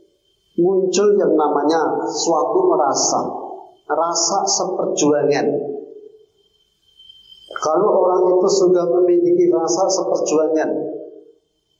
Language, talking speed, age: Indonesian, 70 wpm, 50-69